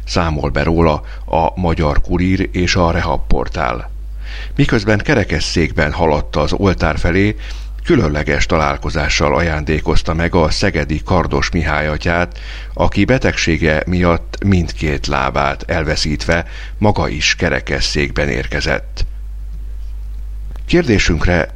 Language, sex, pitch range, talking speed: Hungarian, male, 75-90 Hz, 95 wpm